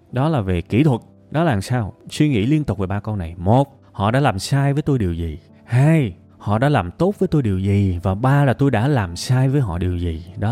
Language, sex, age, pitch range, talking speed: Vietnamese, male, 20-39, 100-150 Hz, 260 wpm